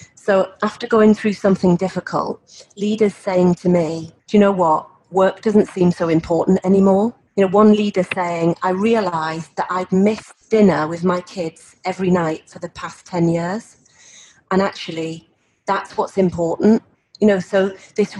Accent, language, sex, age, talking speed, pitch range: British, English, female, 40-59, 165 wpm, 175-205 Hz